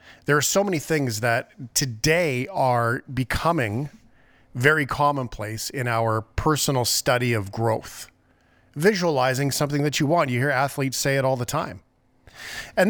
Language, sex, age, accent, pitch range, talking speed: English, male, 40-59, American, 115-145 Hz, 145 wpm